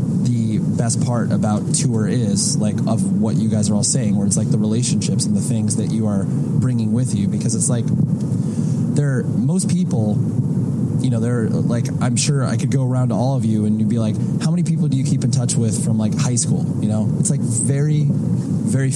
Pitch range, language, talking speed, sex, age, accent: 115-145 Hz, English, 220 wpm, male, 20-39, American